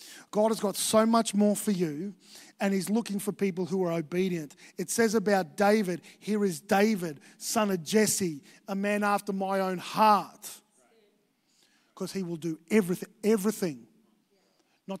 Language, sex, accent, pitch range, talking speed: English, male, Australian, 180-220 Hz, 155 wpm